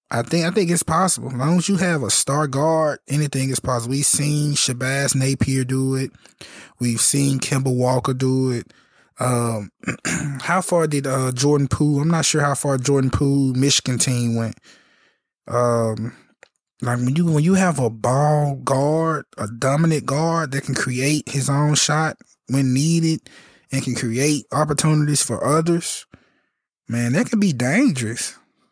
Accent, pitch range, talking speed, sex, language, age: American, 130-165 Hz, 165 wpm, male, English, 20-39